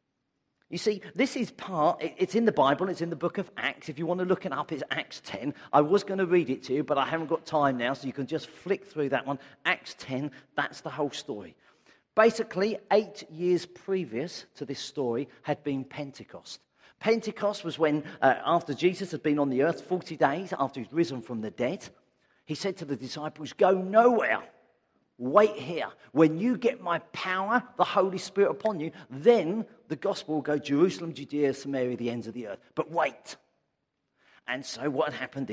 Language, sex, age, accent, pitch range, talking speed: English, male, 40-59, British, 150-195 Hz, 205 wpm